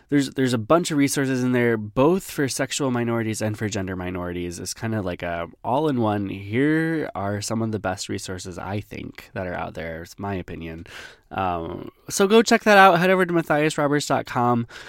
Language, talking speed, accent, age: English, 195 wpm, American, 20-39